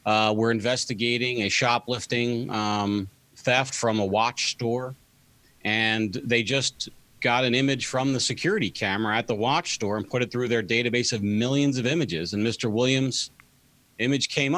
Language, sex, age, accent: English, male, 40-59, American